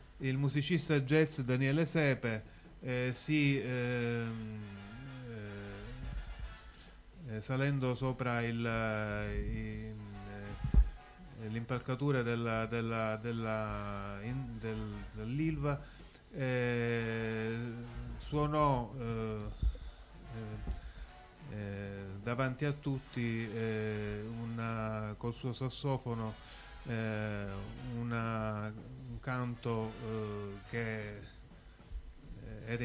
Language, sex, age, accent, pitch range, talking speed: Italian, male, 30-49, native, 110-140 Hz, 55 wpm